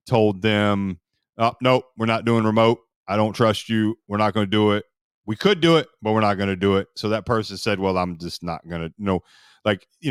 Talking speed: 255 wpm